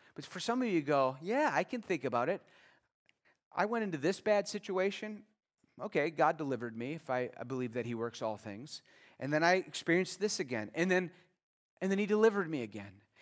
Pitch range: 135-195 Hz